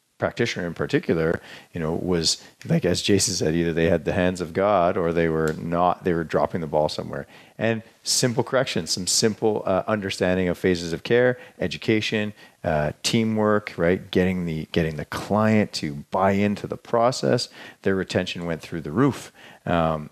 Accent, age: American, 40-59